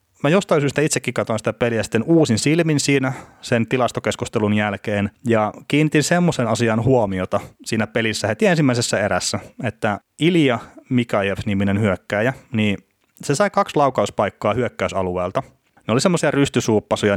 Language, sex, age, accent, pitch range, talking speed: Finnish, male, 30-49, native, 100-125 Hz, 130 wpm